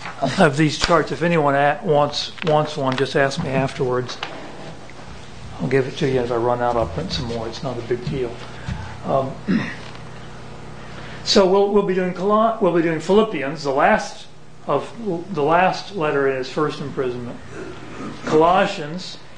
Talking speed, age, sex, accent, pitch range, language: 165 wpm, 40-59, male, American, 135-180 Hz, English